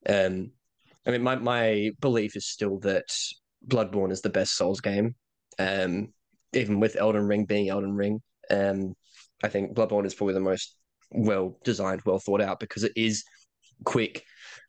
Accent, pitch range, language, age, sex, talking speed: Australian, 100-115 Hz, English, 10-29, male, 150 wpm